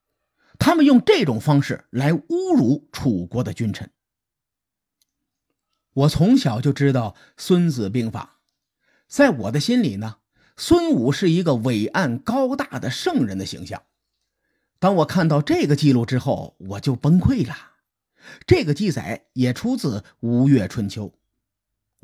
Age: 50-69